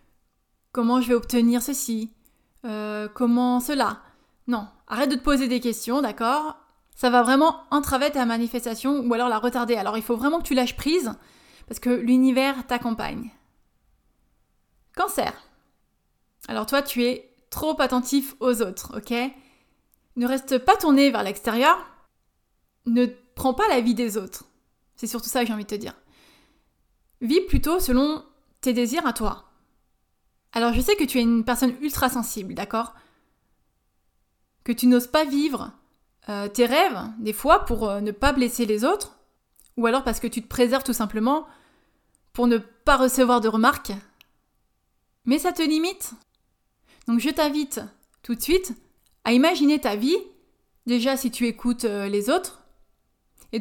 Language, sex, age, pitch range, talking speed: French, female, 20-39, 235-280 Hz, 160 wpm